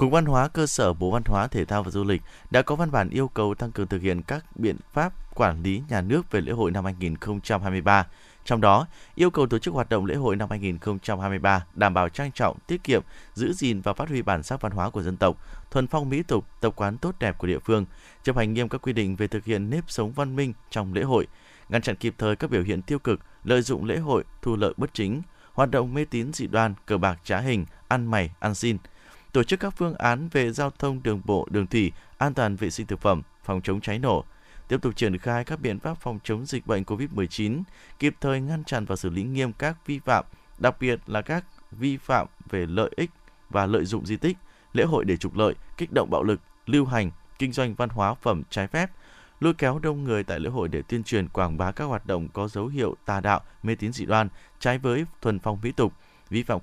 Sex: male